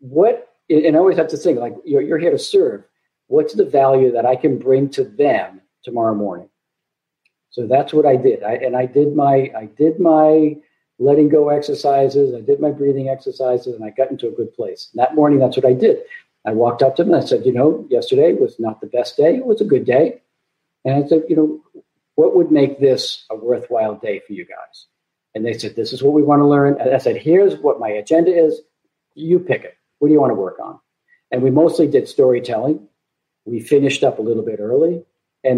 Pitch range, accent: 130-180 Hz, American